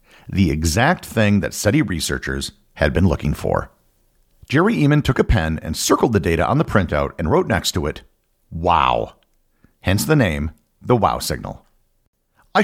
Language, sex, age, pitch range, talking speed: English, male, 50-69, 85-130 Hz, 165 wpm